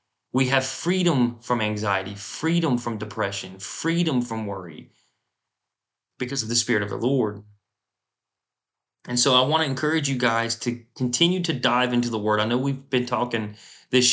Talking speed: 165 wpm